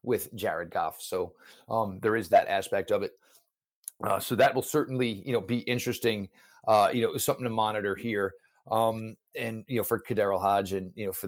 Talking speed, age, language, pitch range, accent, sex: 200 wpm, 40-59, English, 105-130 Hz, American, male